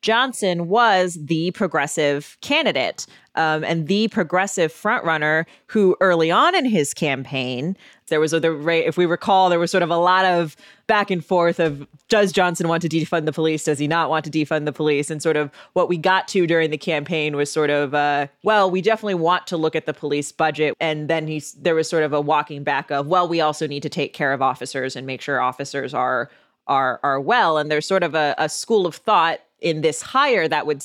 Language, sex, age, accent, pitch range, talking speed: English, female, 20-39, American, 150-185 Hz, 220 wpm